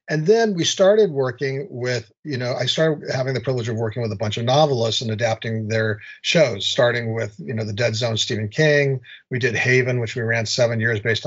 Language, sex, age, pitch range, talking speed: English, male, 40-59, 115-140 Hz, 225 wpm